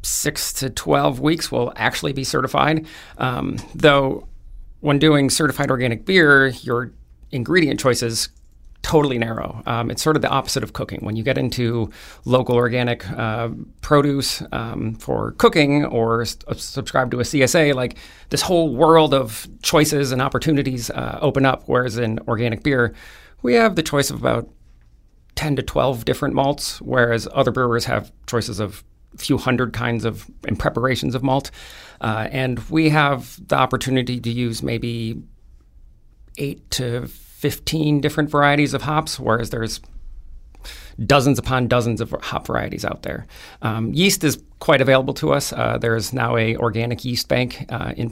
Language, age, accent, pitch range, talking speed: English, 40-59, American, 115-140 Hz, 155 wpm